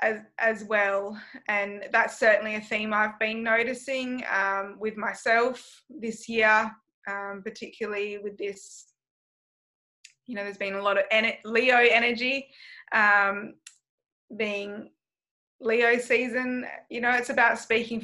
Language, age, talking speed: English, 20-39, 125 wpm